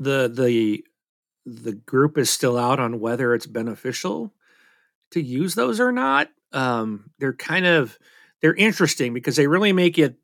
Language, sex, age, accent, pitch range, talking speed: English, male, 40-59, American, 115-150 Hz, 160 wpm